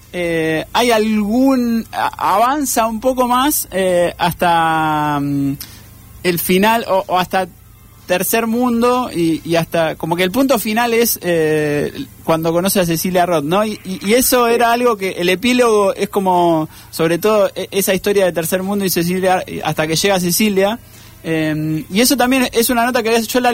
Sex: male